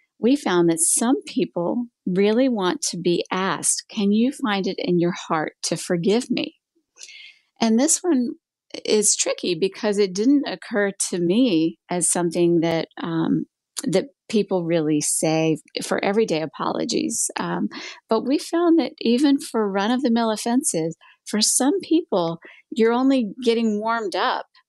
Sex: female